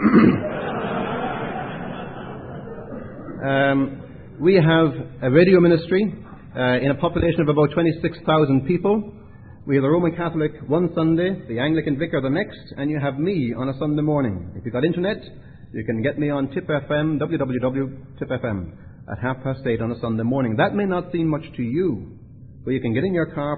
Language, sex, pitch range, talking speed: English, male, 125-160 Hz, 175 wpm